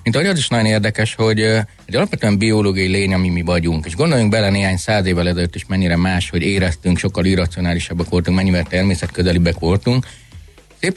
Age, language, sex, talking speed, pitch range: 30-49, Hungarian, male, 180 wpm, 85-105 Hz